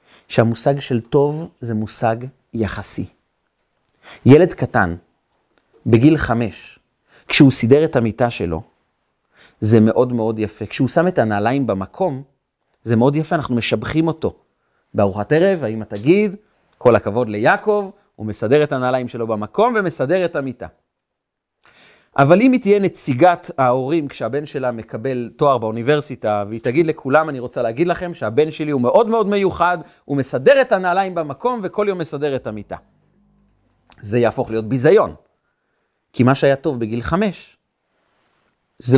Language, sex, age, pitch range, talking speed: Hebrew, male, 30-49, 115-165 Hz, 140 wpm